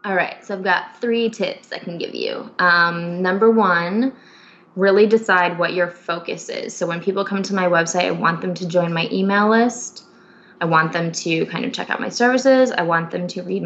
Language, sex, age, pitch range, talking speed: English, female, 20-39, 165-200 Hz, 220 wpm